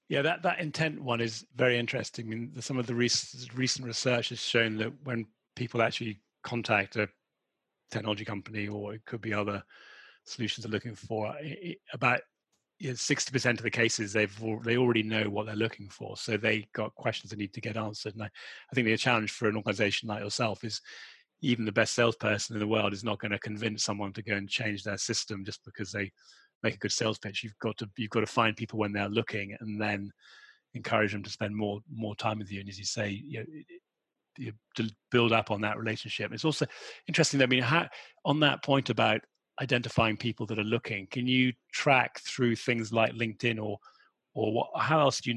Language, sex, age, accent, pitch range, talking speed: English, male, 30-49, British, 105-120 Hz, 215 wpm